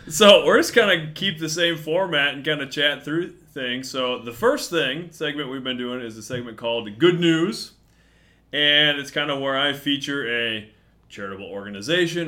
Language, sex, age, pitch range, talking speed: English, male, 30-49, 120-155 Hz, 190 wpm